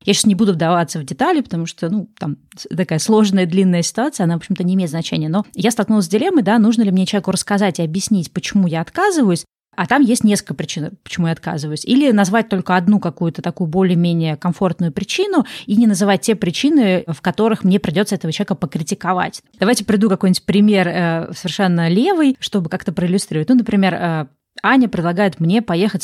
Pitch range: 175-215 Hz